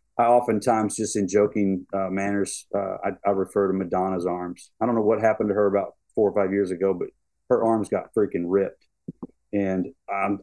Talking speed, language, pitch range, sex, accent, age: 200 wpm, English, 100-135 Hz, male, American, 40-59